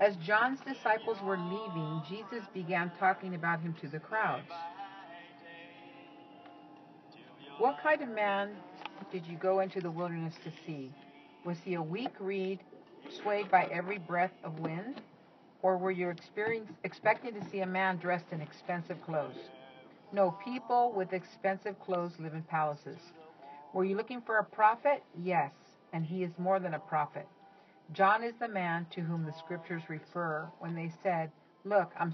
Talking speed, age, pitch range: 155 wpm, 50-69, 170-200 Hz